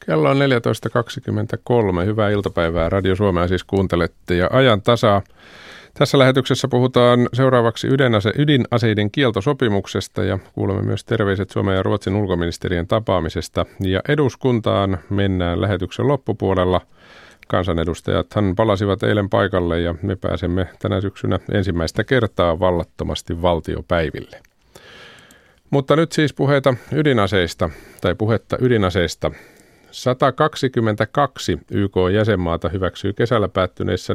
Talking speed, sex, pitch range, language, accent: 105 wpm, male, 90-115 Hz, Finnish, native